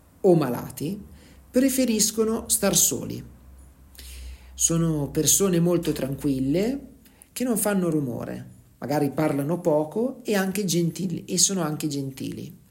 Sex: male